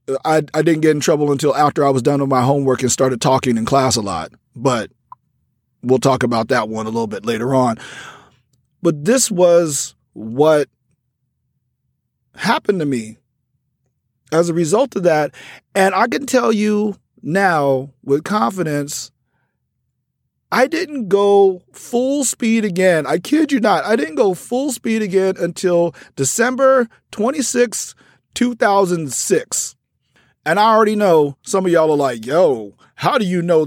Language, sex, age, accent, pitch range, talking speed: English, male, 40-59, American, 135-200 Hz, 155 wpm